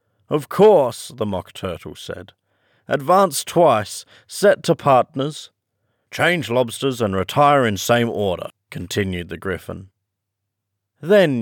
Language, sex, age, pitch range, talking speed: English, male, 40-59, 95-140 Hz, 115 wpm